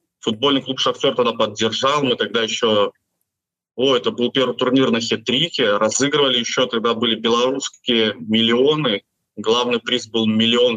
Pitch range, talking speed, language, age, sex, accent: 115-140 Hz, 140 wpm, Russian, 20-39, male, native